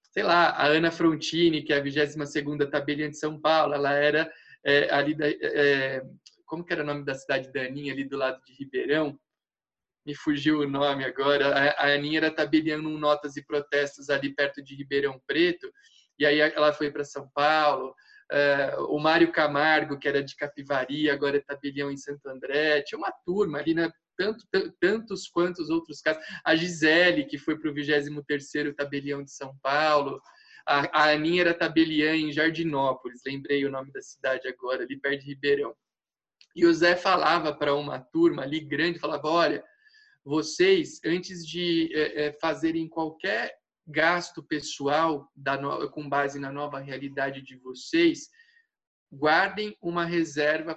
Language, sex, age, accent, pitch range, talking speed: Portuguese, male, 20-39, Brazilian, 145-170 Hz, 165 wpm